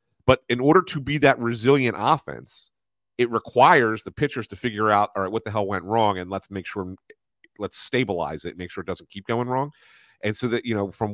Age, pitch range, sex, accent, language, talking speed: 40-59, 95-115 Hz, male, American, English, 225 wpm